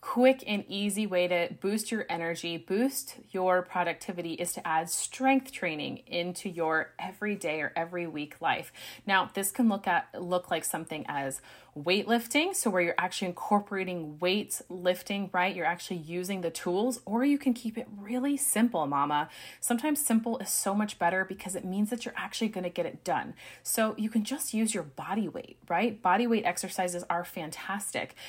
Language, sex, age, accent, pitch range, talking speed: English, female, 30-49, American, 175-225 Hz, 180 wpm